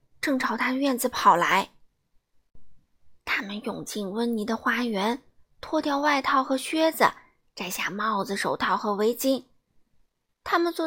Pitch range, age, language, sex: 235-335 Hz, 20-39, Chinese, female